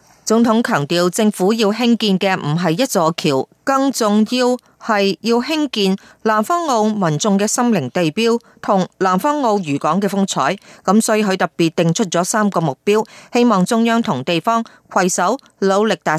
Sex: female